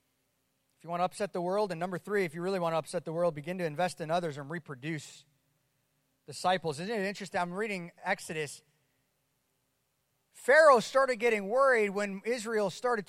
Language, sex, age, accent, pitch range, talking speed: English, male, 30-49, American, 160-215 Hz, 180 wpm